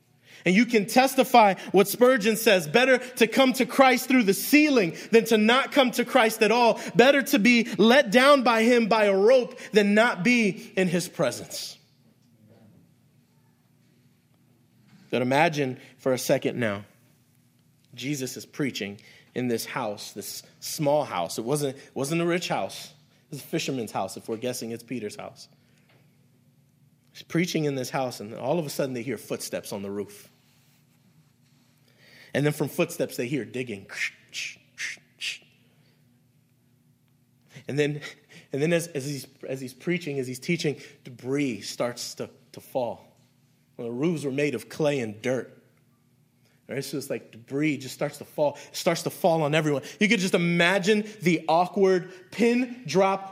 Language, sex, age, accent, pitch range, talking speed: English, male, 30-49, American, 130-210 Hz, 160 wpm